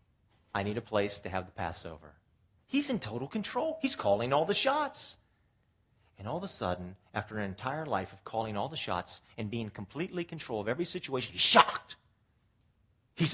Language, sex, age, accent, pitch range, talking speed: English, male, 40-59, American, 105-155 Hz, 190 wpm